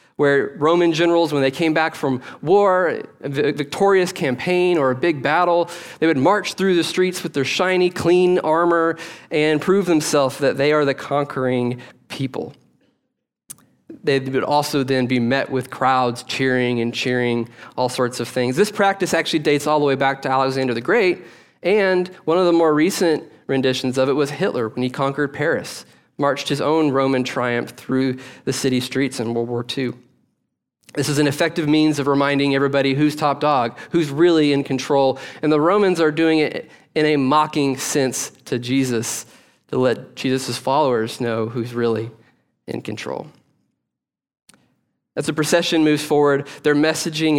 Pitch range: 130-160 Hz